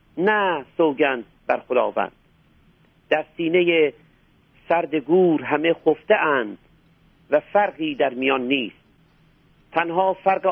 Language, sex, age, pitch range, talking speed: Persian, male, 50-69, 160-185 Hz, 95 wpm